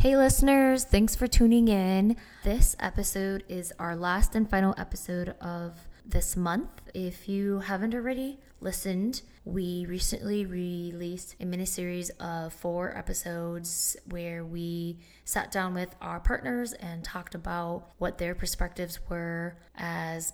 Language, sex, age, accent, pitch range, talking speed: English, female, 20-39, American, 170-190 Hz, 135 wpm